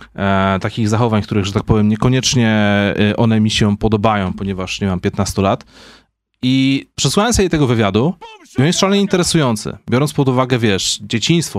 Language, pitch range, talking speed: Polish, 100-150 Hz, 155 wpm